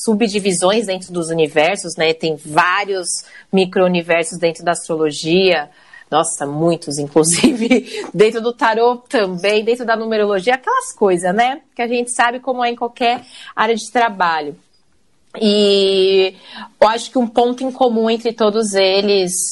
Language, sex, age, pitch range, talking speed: Portuguese, female, 30-49, 180-240 Hz, 140 wpm